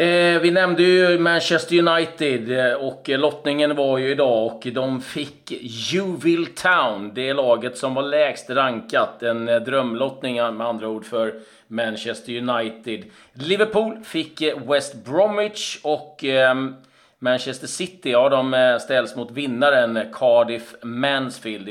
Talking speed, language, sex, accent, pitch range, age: 120 wpm, Swedish, male, native, 115-160 Hz, 30-49